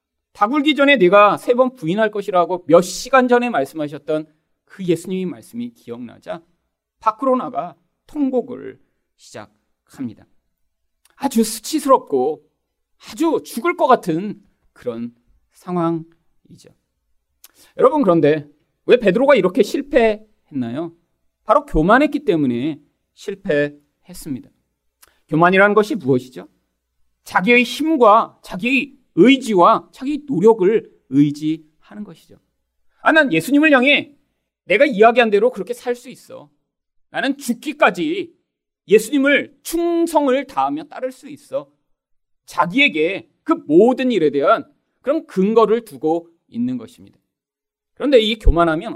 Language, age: Korean, 40-59